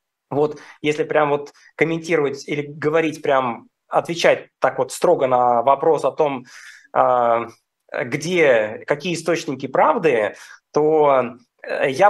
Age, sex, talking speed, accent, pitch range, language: 20-39, male, 110 wpm, native, 140-165 Hz, Russian